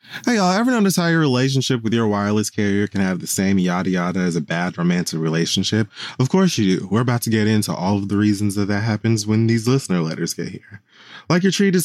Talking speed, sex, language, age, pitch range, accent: 240 wpm, male, English, 20-39, 95-145 Hz, American